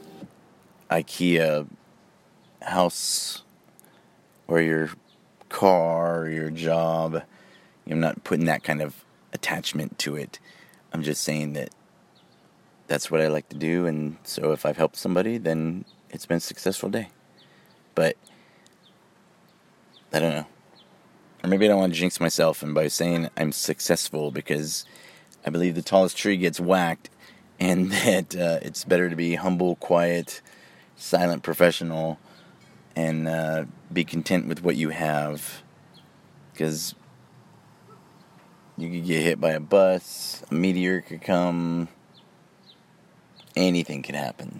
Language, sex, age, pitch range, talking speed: English, male, 30-49, 80-90 Hz, 130 wpm